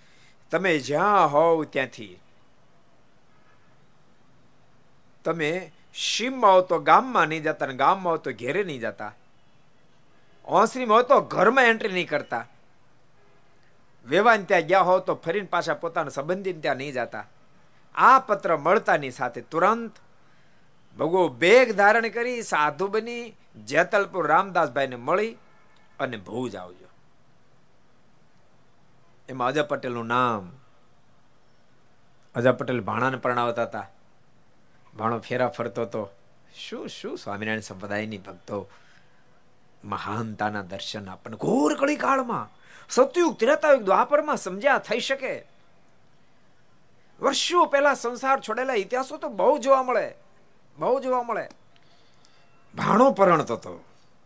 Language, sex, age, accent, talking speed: Gujarati, male, 50-69, native, 65 wpm